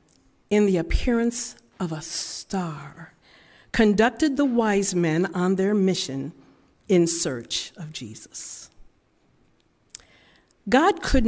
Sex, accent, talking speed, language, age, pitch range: female, American, 100 wpm, English, 50-69, 170-250 Hz